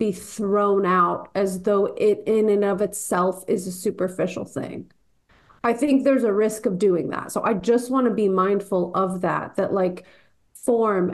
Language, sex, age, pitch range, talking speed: English, female, 30-49, 195-235 Hz, 185 wpm